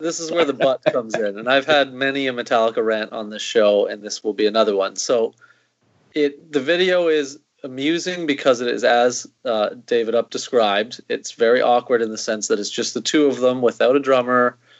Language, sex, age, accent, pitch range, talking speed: English, male, 30-49, American, 110-150 Hz, 215 wpm